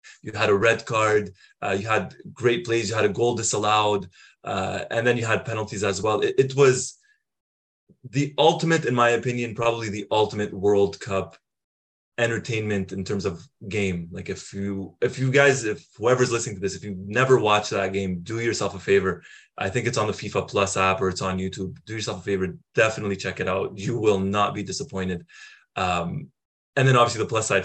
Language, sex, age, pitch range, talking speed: English, male, 20-39, 95-120 Hz, 205 wpm